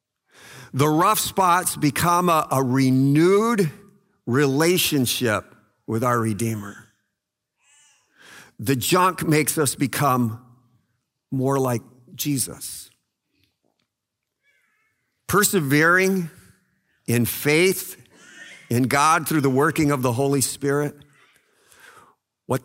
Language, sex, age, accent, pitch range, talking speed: English, male, 50-69, American, 120-165 Hz, 85 wpm